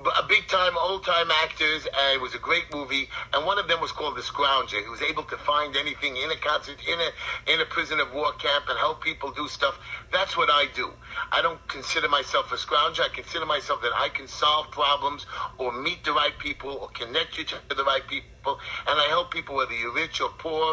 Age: 50-69